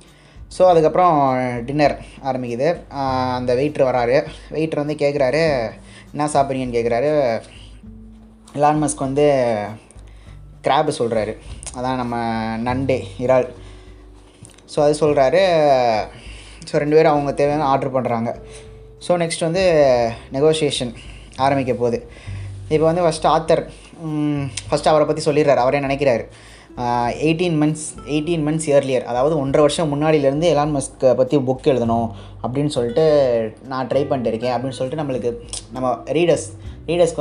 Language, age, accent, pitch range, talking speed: Tamil, 20-39, native, 115-150 Hz, 120 wpm